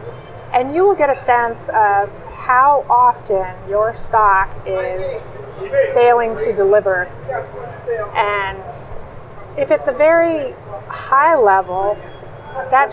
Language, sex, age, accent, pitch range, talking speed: English, female, 30-49, American, 205-265 Hz, 105 wpm